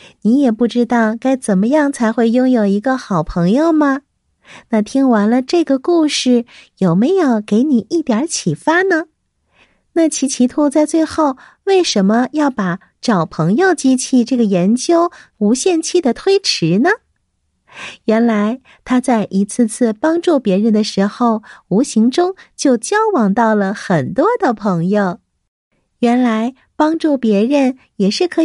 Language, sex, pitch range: Chinese, female, 220-315 Hz